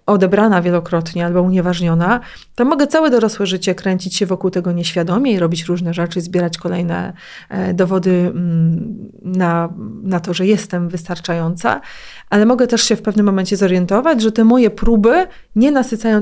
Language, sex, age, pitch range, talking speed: Polish, female, 30-49, 180-215 Hz, 150 wpm